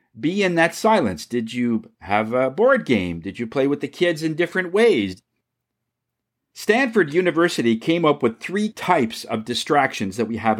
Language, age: English, 50-69